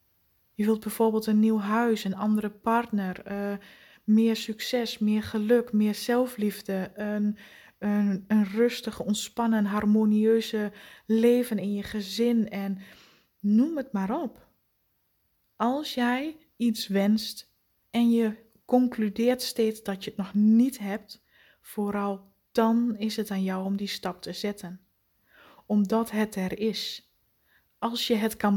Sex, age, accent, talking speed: female, 20-39, Dutch, 135 wpm